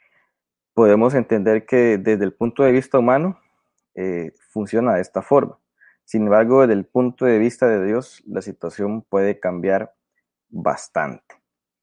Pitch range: 90-115 Hz